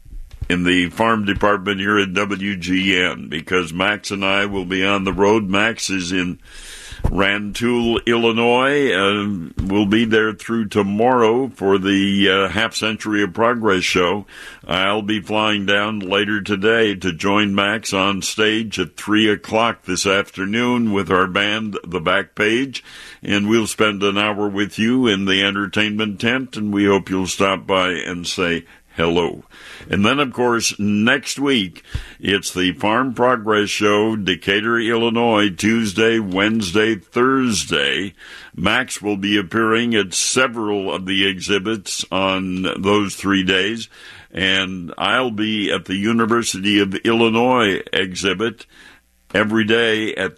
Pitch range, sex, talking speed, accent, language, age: 95-110 Hz, male, 140 wpm, American, English, 60-79